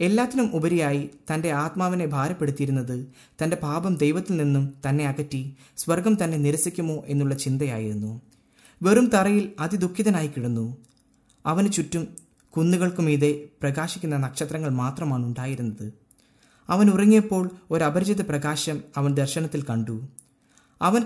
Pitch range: 140-180 Hz